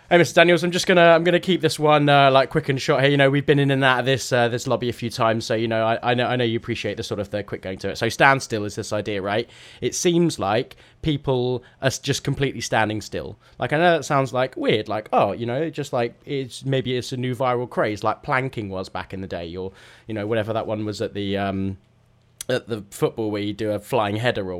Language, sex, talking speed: English, male, 280 wpm